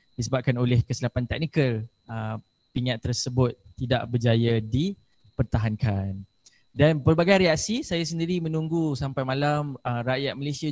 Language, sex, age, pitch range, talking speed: Malay, male, 20-39, 120-145 Hz, 120 wpm